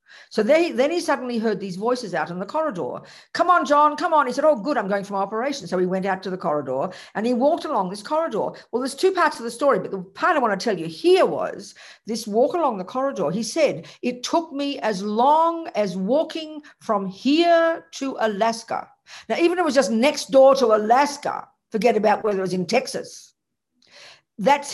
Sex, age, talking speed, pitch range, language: female, 50-69, 220 wpm, 195-275 Hz, English